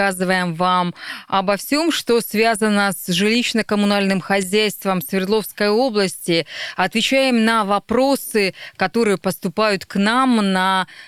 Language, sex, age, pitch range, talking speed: Russian, female, 30-49, 185-235 Hz, 95 wpm